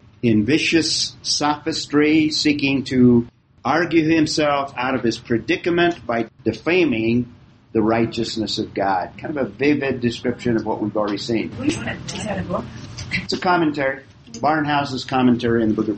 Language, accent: English, American